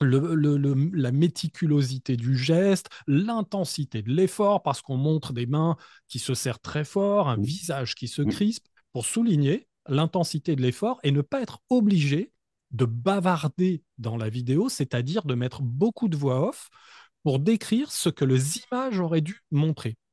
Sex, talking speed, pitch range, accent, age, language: male, 160 wpm, 130-185 Hz, French, 30-49, French